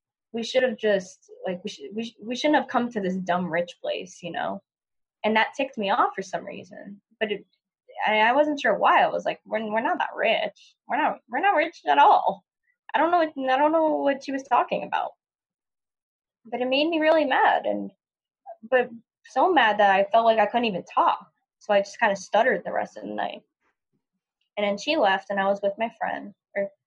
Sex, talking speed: female, 230 wpm